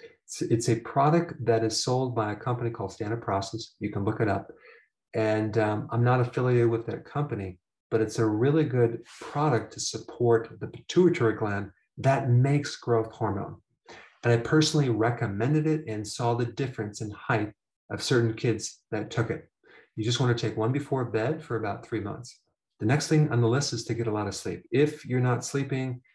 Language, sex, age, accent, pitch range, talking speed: English, male, 40-59, American, 105-130 Hz, 195 wpm